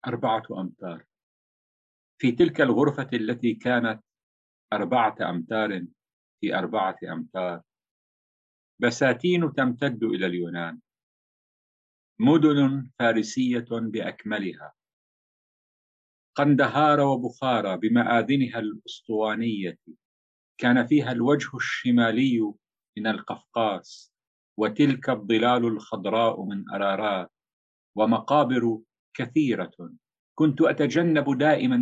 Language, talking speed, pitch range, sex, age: English, 75 wpm, 110-145 Hz, male, 50-69